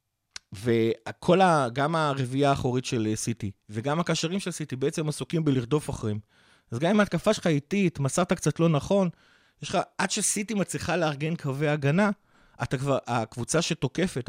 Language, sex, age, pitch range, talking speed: Hebrew, male, 30-49, 130-165 Hz, 145 wpm